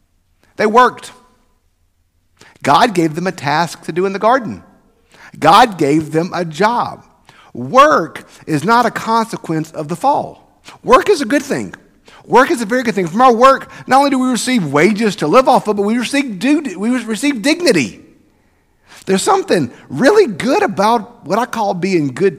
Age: 50-69